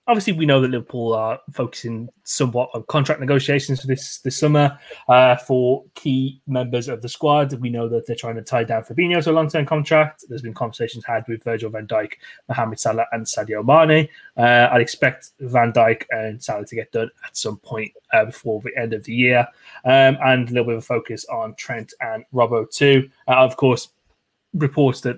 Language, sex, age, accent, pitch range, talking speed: English, male, 20-39, British, 120-150 Hz, 205 wpm